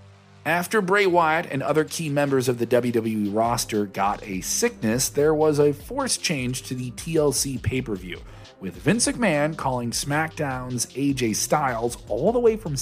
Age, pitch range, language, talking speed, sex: 40-59, 110-155 Hz, English, 160 wpm, male